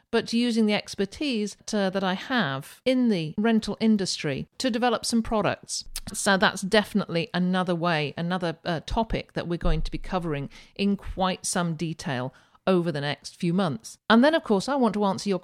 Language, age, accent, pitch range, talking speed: English, 50-69, British, 165-215 Hz, 185 wpm